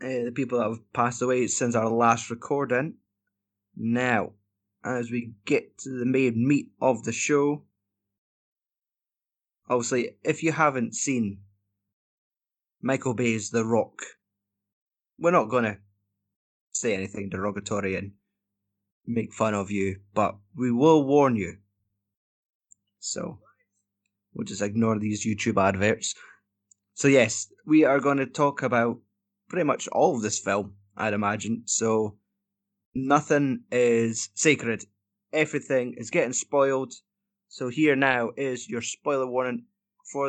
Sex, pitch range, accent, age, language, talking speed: male, 100-145 Hz, British, 20-39, English, 130 wpm